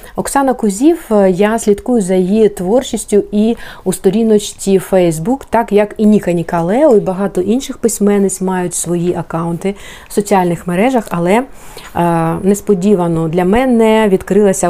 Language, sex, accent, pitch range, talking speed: Ukrainian, female, native, 180-215 Hz, 125 wpm